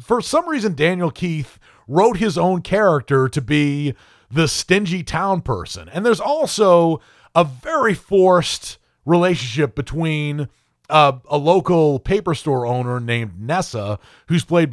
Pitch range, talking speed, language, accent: 130-185 Hz, 135 wpm, English, American